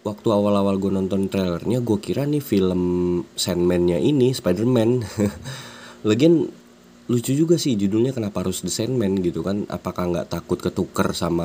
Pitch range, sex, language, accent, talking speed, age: 80-115 Hz, male, Indonesian, native, 150 wpm, 20-39